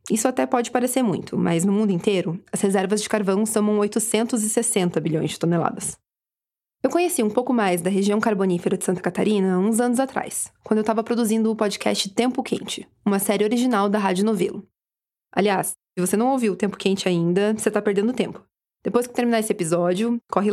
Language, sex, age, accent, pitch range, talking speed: Portuguese, female, 20-39, Brazilian, 195-235 Hz, 190 wpm